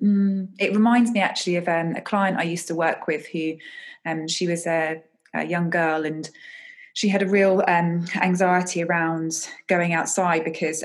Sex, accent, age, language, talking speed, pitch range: female, British, 20-39, English, 175 wpm, 160-195 Hz